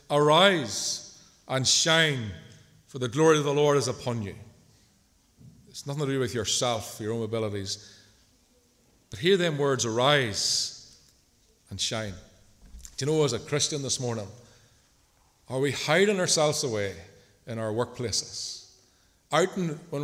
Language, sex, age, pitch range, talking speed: English, male, 40-59, 115-155 Hz, 135 wpm